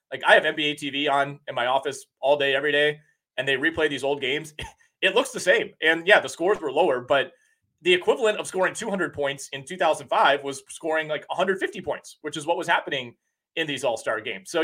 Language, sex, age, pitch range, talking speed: English, male, 30-49, 135-175 Hz, 215 wpm